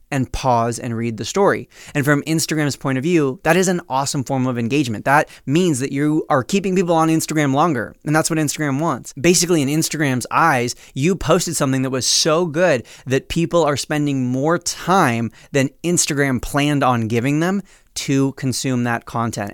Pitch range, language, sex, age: 125-150 Hz, English, male, 20-39